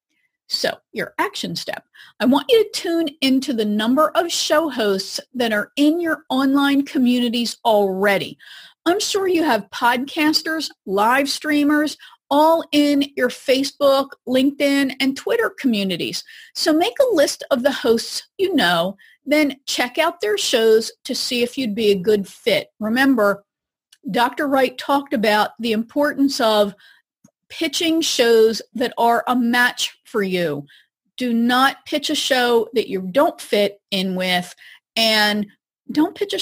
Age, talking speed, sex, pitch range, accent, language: 40-59, 150 wpm, female, 225-315 Hz, American, English